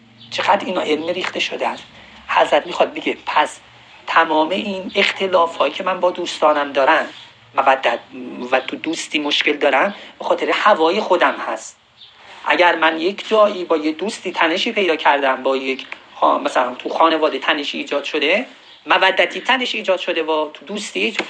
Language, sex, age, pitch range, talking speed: Persian, male, 40-59, 160-220 Hz, 155 wpm